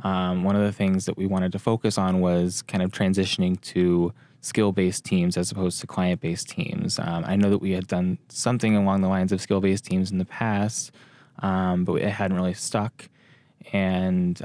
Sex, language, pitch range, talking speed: male, English, 95-110 Hz, 195 wpm